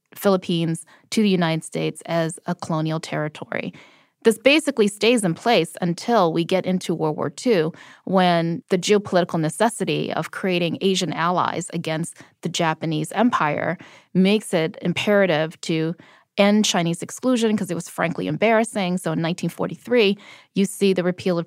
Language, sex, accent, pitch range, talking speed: English, female, American, 165-210 Hz, 150 wpm